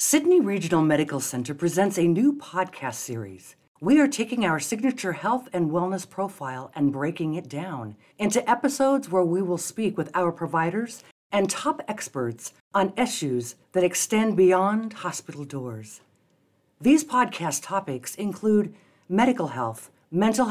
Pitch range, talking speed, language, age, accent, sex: 155-225 Hz, 140 wpm, English, 50-69, American, female